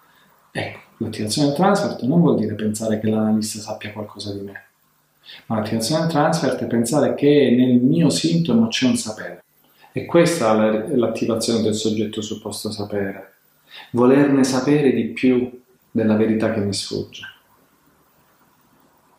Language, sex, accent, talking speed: Italian, male, native, 140 wpm